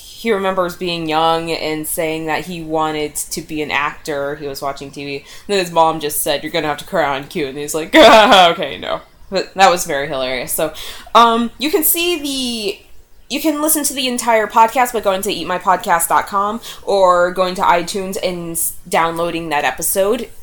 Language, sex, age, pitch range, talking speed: English, female, 20-39, 160-220 Hz, 195 wpm